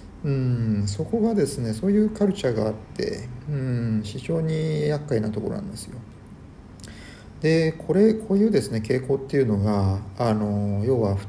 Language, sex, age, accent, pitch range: Japanese, male, 40-59, native, 110-155 Hz